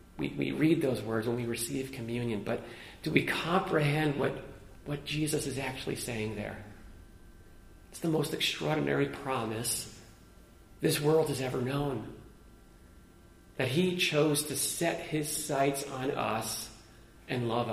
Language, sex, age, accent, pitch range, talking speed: English, male, 40-59, American, 115-155 Hz, 140 wpm